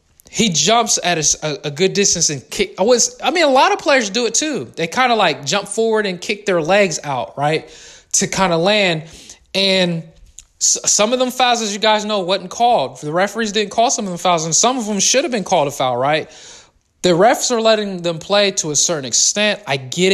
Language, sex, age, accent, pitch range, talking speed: English, male, 20-39, American, 160-210 Hz, 240 wpm